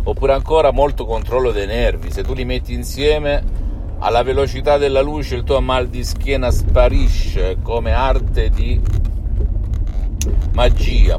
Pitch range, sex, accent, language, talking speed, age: 80-110 Hz, male, native, Italian, 135 wpm, 50-69